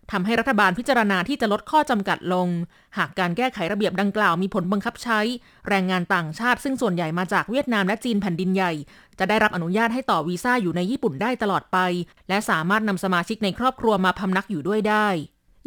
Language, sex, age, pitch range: Thai, female, 20-39, 185-235 Hz